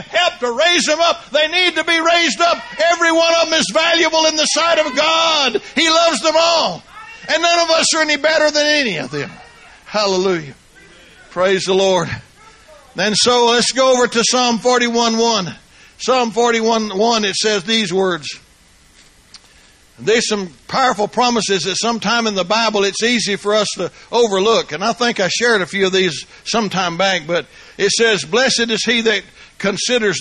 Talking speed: 175 wpm